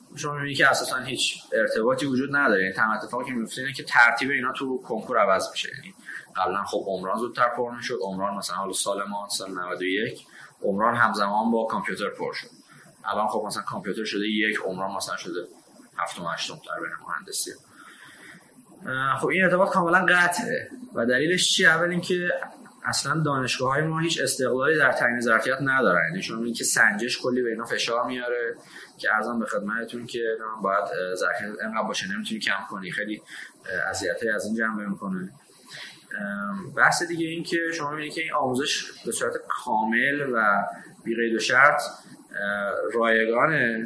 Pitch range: 105-160 Hz